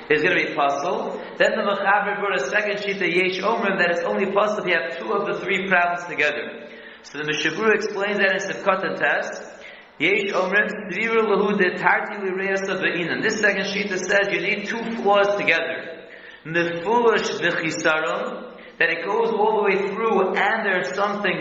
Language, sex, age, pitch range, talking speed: English, male, 40-59, 175-205 Hz, 165 wpm